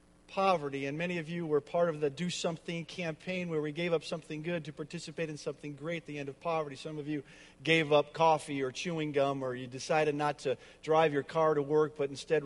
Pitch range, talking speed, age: 155-195 Hz, 235 wpm, 50-69